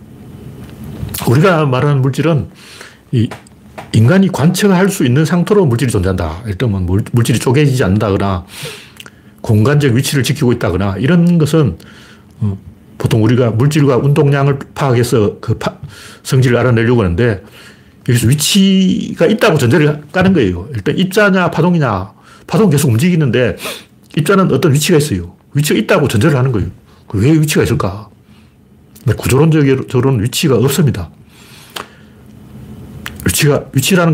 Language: Korean